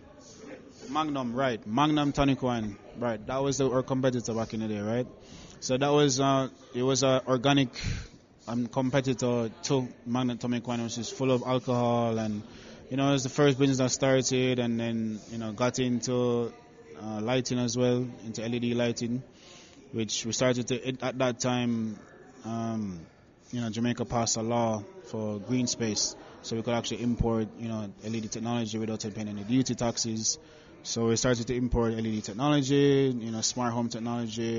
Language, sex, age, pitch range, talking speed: English, male, 20-39, 115-130 Hz, 175 wpm